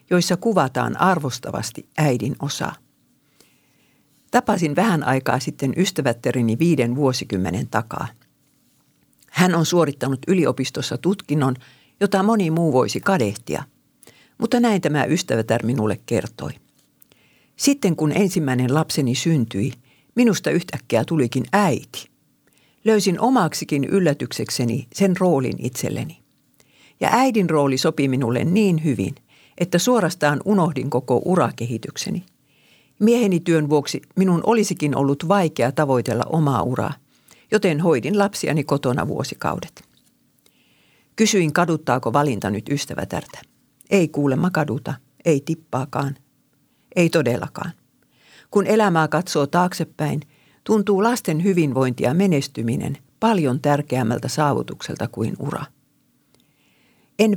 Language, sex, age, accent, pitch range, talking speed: Finnish, female, 60-79, native, 130-185 Hz, 100 wpm